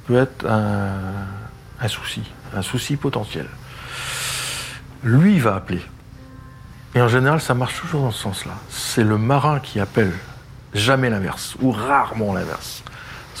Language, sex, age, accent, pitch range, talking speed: French, male, 60-79, French, 110-135 Hz, 135 wpm